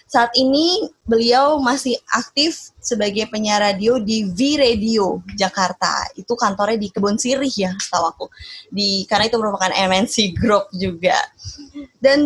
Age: 20-39